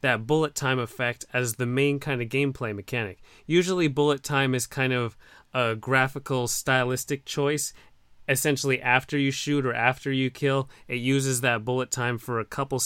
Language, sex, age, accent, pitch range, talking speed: English, male, 30-49, American, 125-145 Hz, 175 wpm